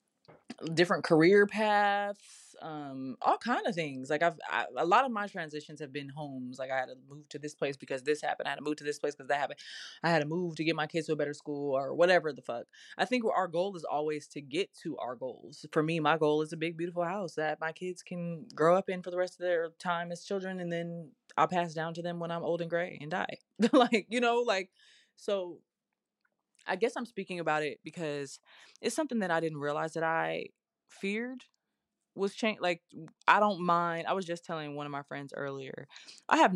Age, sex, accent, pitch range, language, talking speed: 20-39, female, American, 145-180 Hz, English, 235 wpm